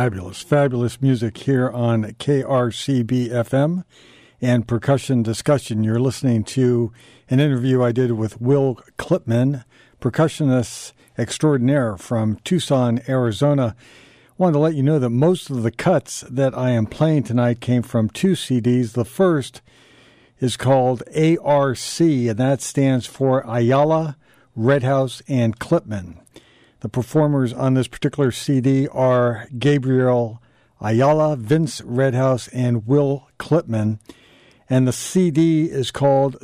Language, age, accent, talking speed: English, 60-79, American, 125 wpm